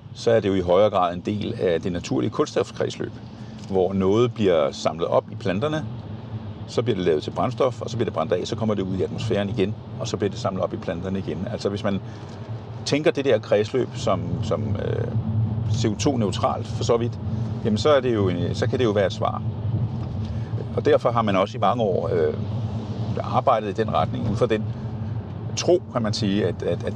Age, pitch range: 50-69, 105-115 Hz